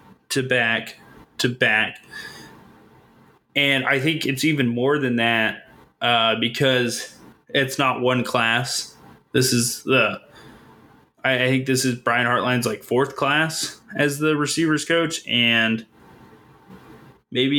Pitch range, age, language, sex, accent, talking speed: 125-150 Hz, 20-39, English, male, American, 125 wpm